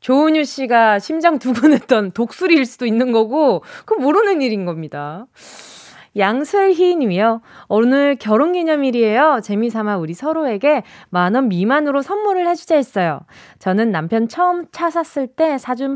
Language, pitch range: Korean, 200-305 Hz